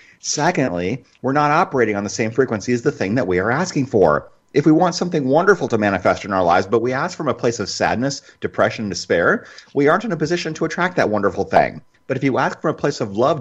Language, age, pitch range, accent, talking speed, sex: English, 30-49, 100-140 Hz, American, 250 wpm, male